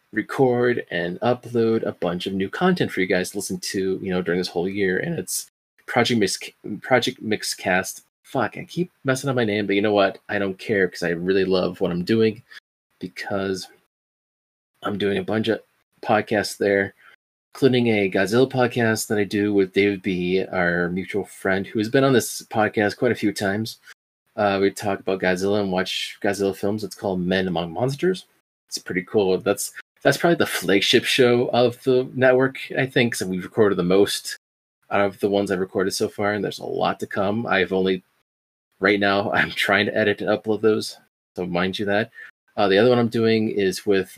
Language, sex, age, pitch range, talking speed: English, male, 30-49, 95-115 Hz, 200 wpm